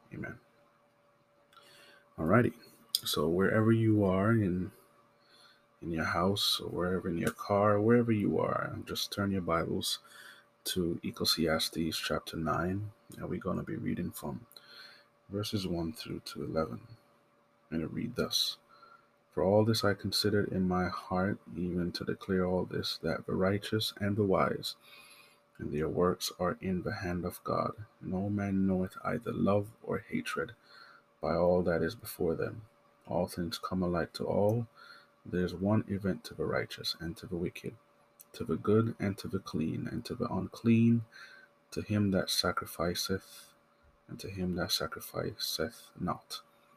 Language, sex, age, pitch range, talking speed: English, male, 30-49, 90-110 Hz, 155 wpm